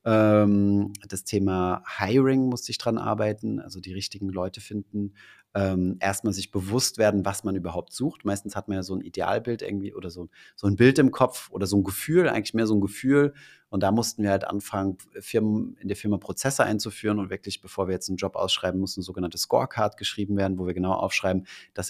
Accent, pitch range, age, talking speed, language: German, 95-110 Hz, 30-49, 205 wpm, German